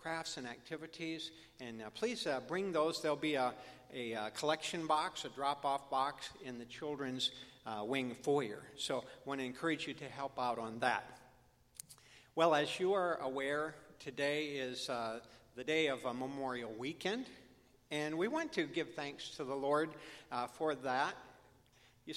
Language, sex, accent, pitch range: English, male, American, 130-160 Hz